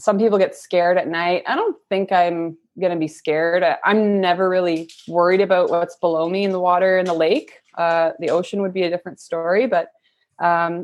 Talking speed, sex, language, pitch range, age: 210 wpm, female, English, 165-200 Hz, 20-39